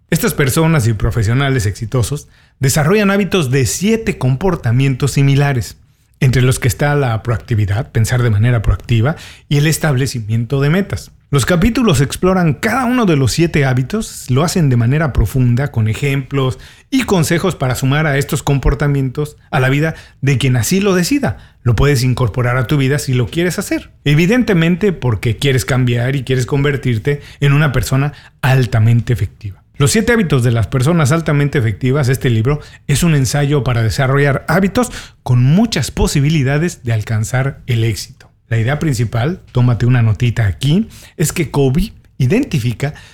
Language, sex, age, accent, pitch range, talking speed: Spanish, male, 40-59, Mexican, 125-160 Hz, 155 wpm